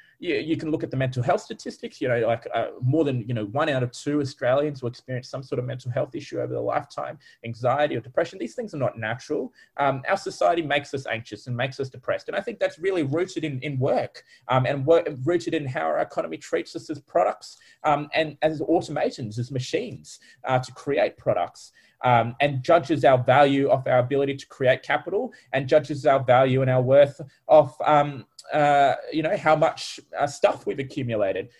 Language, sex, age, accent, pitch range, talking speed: English, male, 20-39, Australian, 125-160 Hz, 205 wpm